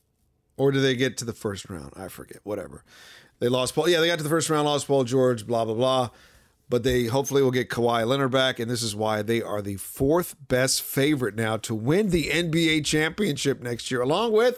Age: 40-59